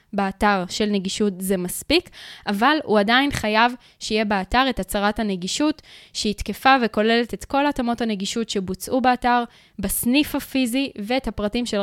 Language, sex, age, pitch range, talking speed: Hebrew, female, 10-29, 200-255 Hz, 140 wpm